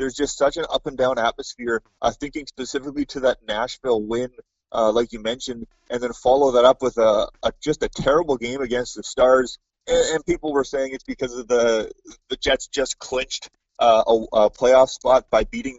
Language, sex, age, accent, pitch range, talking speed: English, male, 30-49, American, 125-150 Hz, 205 wpm